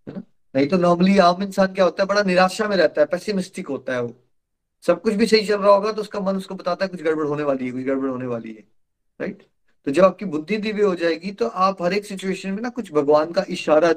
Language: Hindi